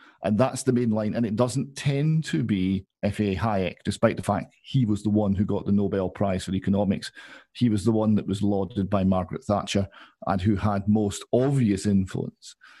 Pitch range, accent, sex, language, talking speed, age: 100-120 Hz, British, male, English, 200 wpm, 50-69